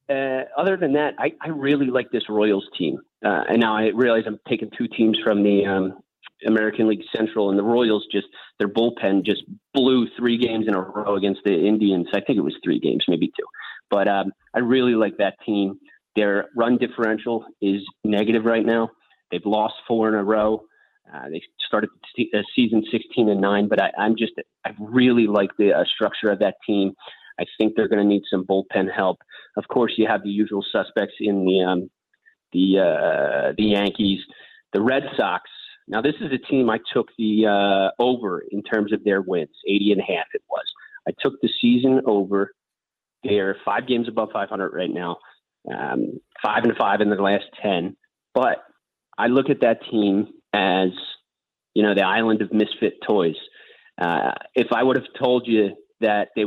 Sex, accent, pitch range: male, American, 100-120 Hz